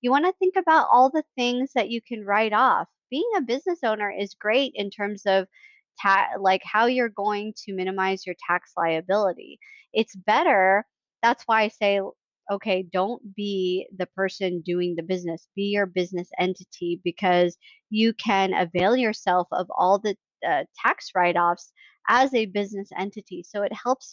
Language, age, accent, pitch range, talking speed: English, 20-39, American, 195-245 Hz, 165 wpm